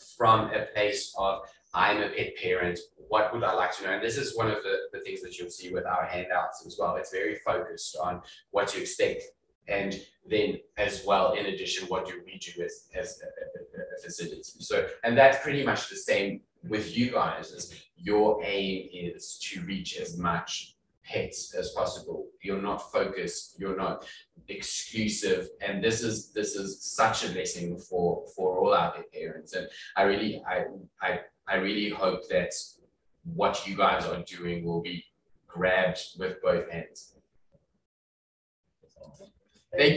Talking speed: 165 wpm